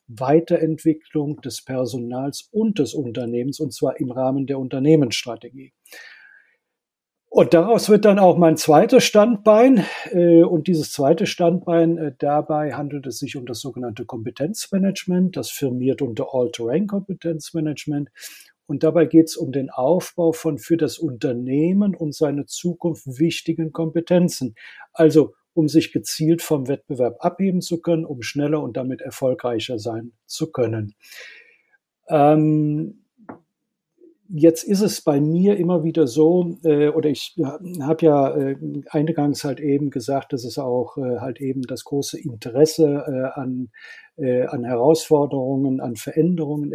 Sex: male